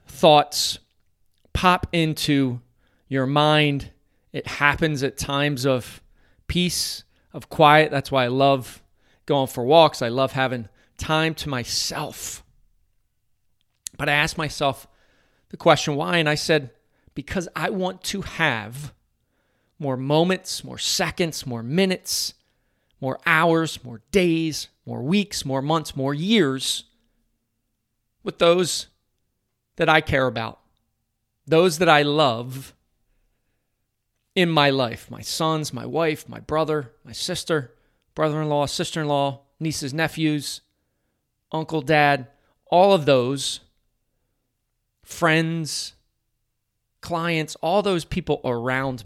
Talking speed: 115 wpm